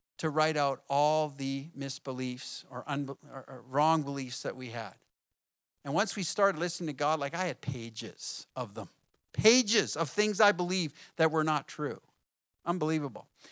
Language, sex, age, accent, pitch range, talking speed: English, male, 50-69, American, 145-190 Hz, 160 wpm